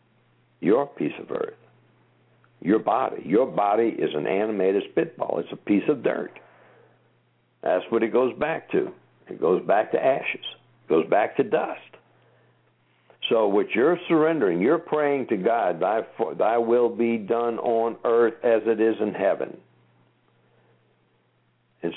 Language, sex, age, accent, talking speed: English, male, 60-79, American, 150 wpm